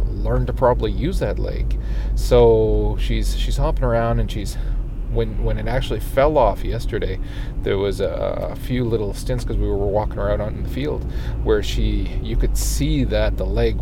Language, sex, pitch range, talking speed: English, male, 100-120 Hz, 190 wpm